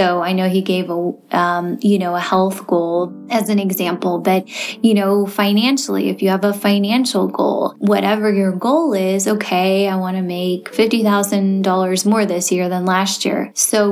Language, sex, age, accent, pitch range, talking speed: English, female, 20-39, American, 185-210 Hz, 180 wpm